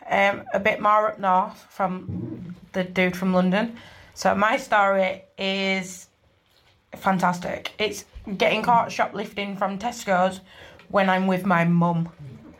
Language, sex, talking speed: English, female, 130 wpm